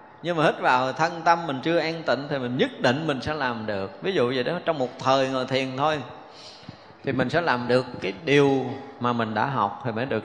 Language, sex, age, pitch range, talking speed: Vietnamese, male, 20-39, 115-150 Hz, 245 wpm